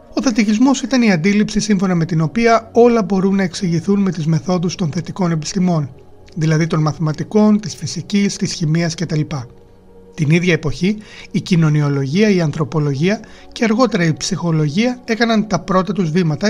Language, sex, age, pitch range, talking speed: Greek, male, 30-49, 155-205 Hz, 155 wpm